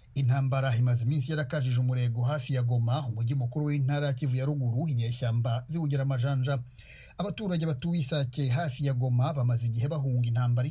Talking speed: 150 wpm